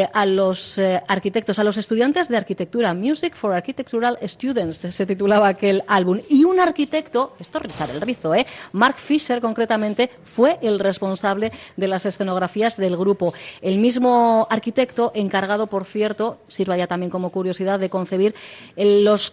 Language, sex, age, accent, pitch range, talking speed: Spanish, female, 30-49, Spanish, 185-230 Hz, 150 wpm